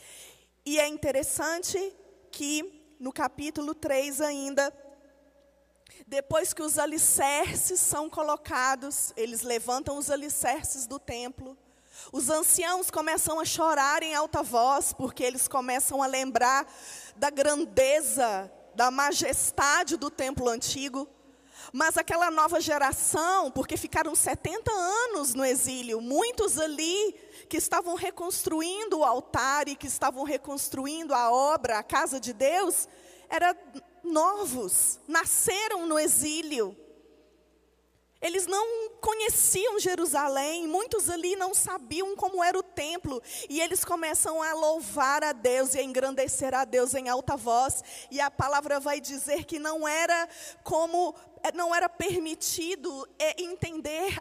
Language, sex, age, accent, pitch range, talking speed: Portuguese, female, 20-39, Brazilian, 270-340 Hz, 125 wpm